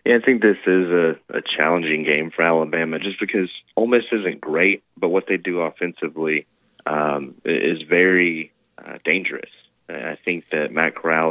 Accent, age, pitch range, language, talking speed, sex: American, 20-39, 80-95 Hz, English, 170 wpm, male